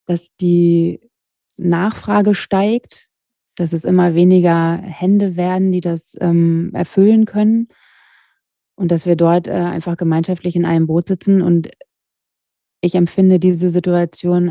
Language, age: German, 30-49